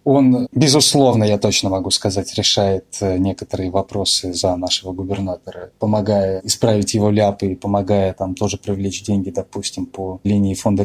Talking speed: 145 wpm